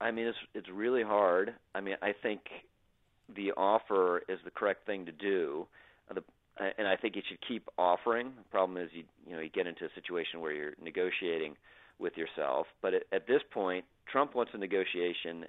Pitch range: 85-115 Hz